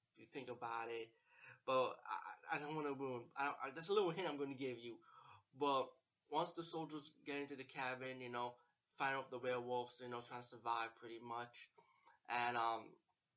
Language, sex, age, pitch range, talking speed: English, male, 20-39, 120-150 Hz, 205 wpm